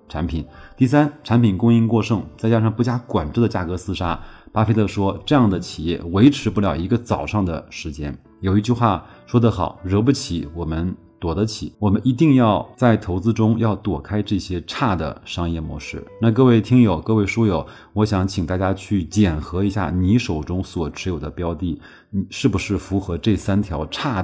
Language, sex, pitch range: Chinese, male, 85-110 Hz